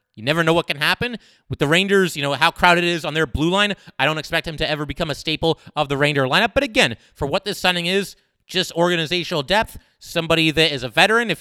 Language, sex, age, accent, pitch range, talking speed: English, male, 30-49, American, 145-185 Hz, 250 wpm